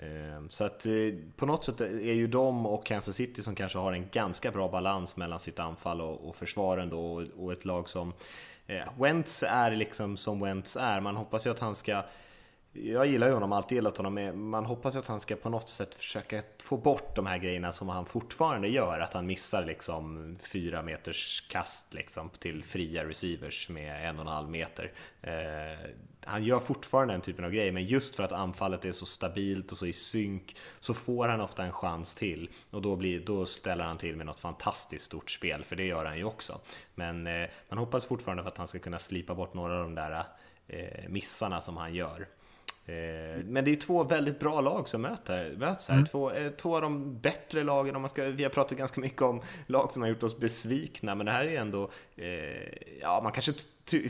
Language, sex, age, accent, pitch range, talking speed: Swedish, male, 20-39, Norwegian, 85-120 Hz, 215 wpm